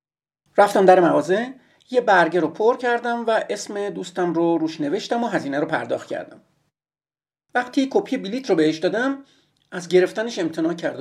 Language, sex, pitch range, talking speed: Persian, male, 160-245 Hz, 160 wpm